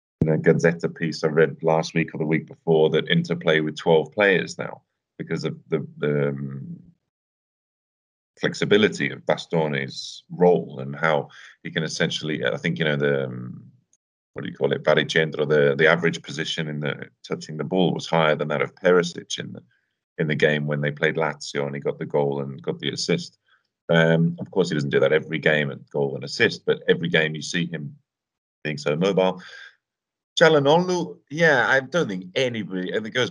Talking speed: 195 wpm